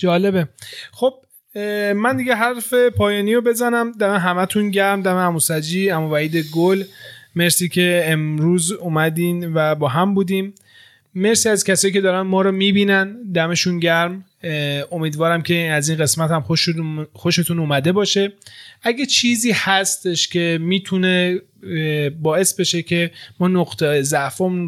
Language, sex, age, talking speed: Persian, male, 30-49, 125 wpm